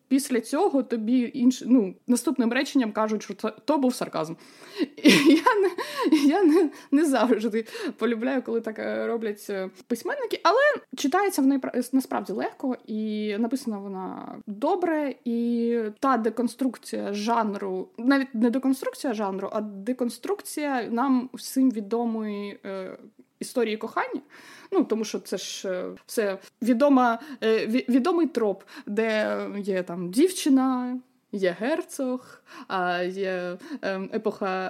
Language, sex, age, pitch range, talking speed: Ukrainian, female, 20-39, 215-280 Hz, 115 wpm